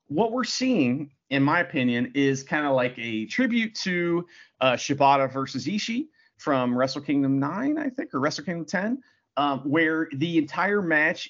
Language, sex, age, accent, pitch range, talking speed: English, male, 40-59, American, 130-185 Hz, 170 wpm